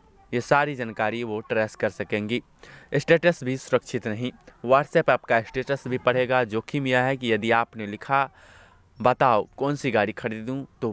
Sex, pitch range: male, 110-135 Hz